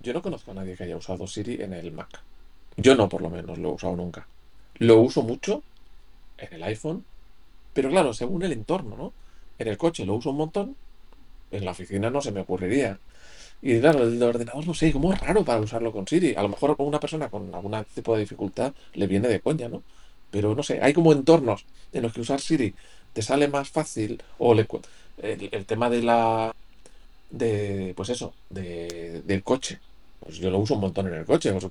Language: Spanish